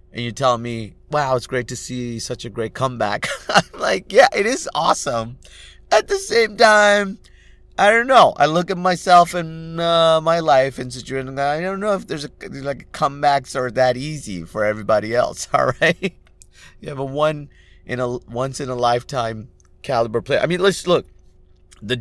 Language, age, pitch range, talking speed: English, 30-49, 95-140 Hz, 185 wpm